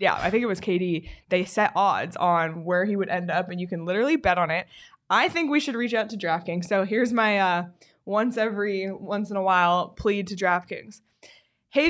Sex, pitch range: female, 180-225 Hz